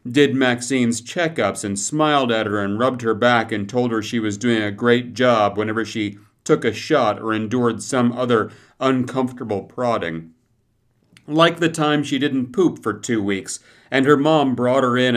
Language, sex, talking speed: English, male, 180 wpm